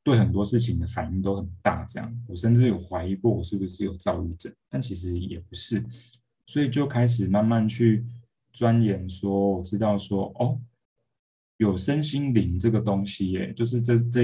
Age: 20-39